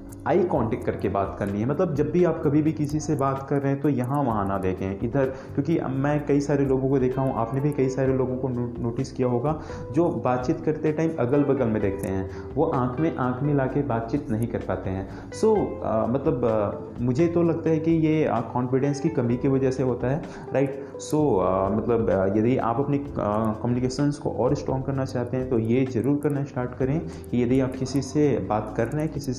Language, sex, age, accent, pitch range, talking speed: Hindi, male, 30-49, native, 110-140 Hz, 225 wpm